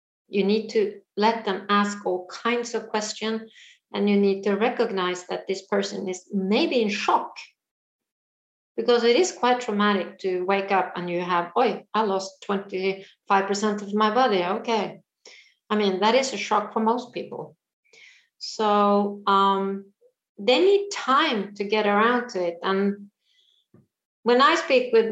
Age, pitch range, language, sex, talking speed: 40-59, 190-225 Hz, English, female, 155 wpm